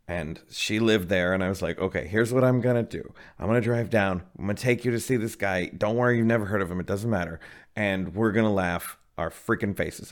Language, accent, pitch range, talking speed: English, American, 95-125 Hz, 280 wpm